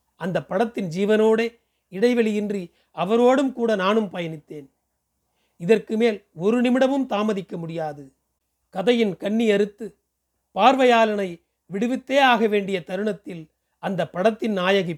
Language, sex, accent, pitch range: Tamil, male, native, 170-230 Hz